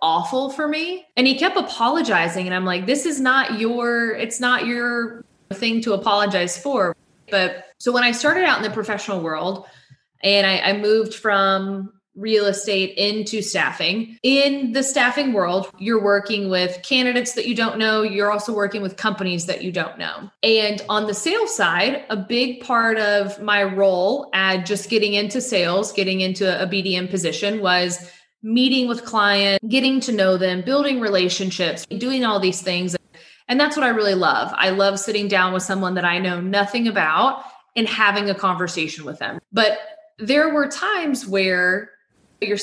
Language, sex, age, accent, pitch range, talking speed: English, female, 20-39, American, 185-235 Hz, 175 wpm